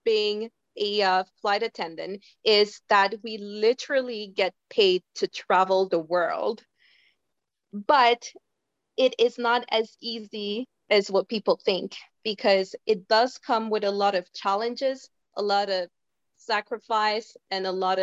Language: English